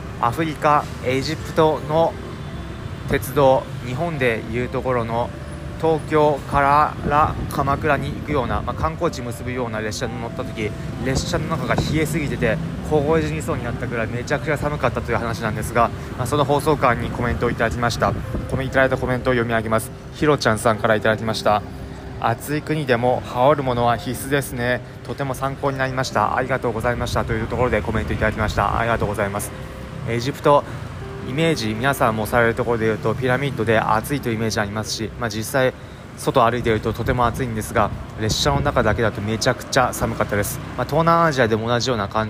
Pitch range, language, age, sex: 110-135 Hz, Japanese, 20-39, male